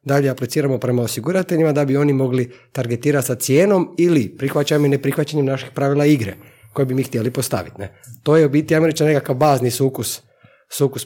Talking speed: 180 wpm